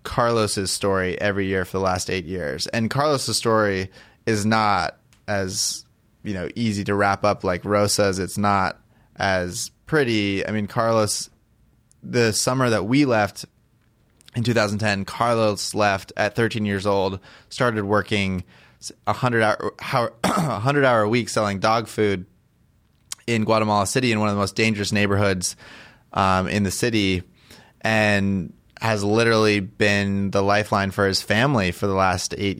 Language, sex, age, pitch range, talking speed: English, male, 20-39, 95-110 Hz, 155 wpm